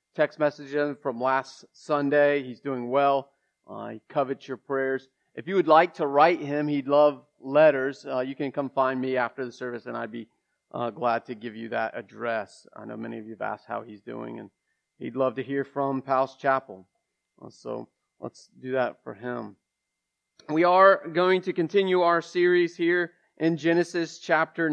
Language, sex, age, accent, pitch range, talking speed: English, male, 40-59, American, 130-165 Hz, 190 wpm